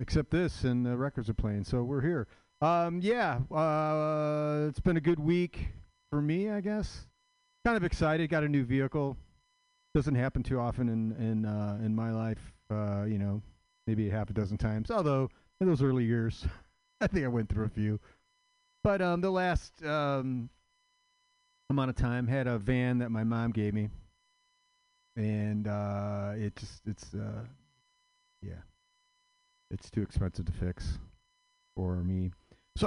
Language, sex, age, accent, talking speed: English, male, 40-59, American, 165 wpm